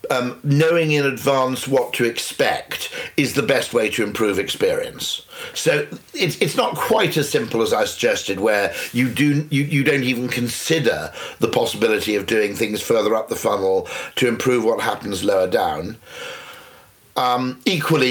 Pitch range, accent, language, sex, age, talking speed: 115-145 Hz, British, English, male, 50-69, 160 wpm